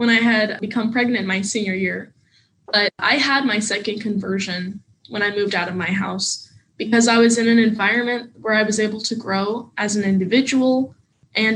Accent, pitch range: American, 195-225 Hz